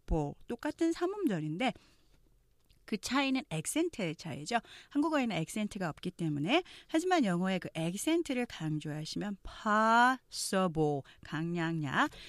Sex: female